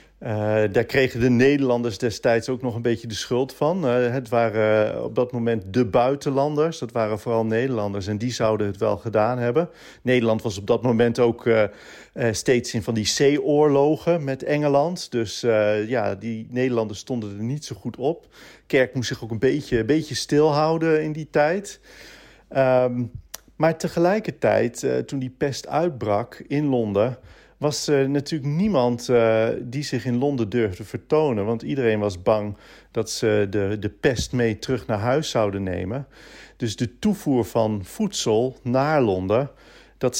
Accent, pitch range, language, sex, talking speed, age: Dutch, 110-140 Hz, Dutch, male, 170 wpm, 40-59